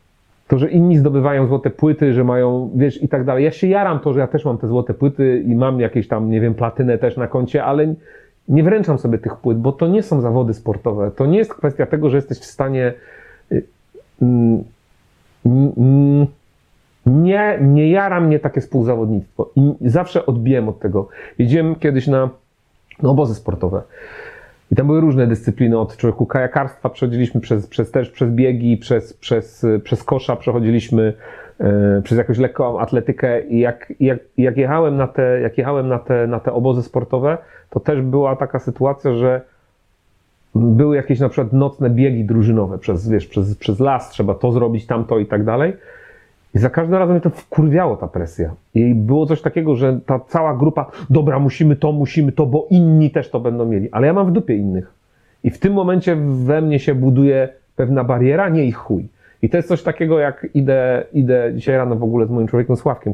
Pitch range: 120-150 Hz